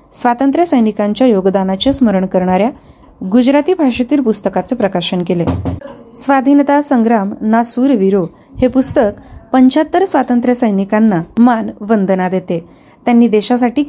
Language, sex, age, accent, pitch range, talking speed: Marathi, female, 30-49, native, 190-250 Hz, 65 wpm